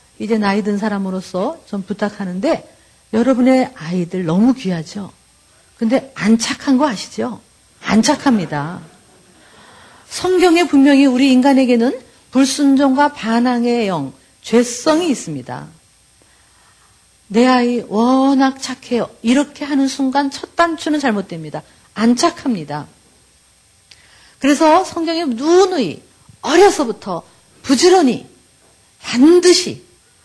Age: 50-69